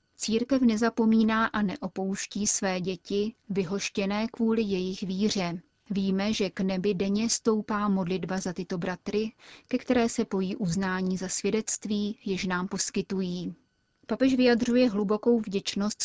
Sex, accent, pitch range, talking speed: female, native, 190-215 Hz, 125 wpm